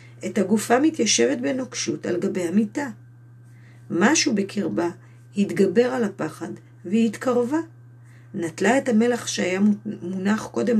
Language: Hebrew